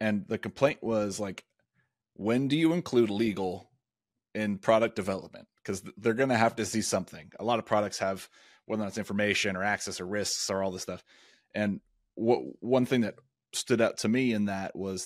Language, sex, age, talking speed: English, male, 30-49, 190 wpm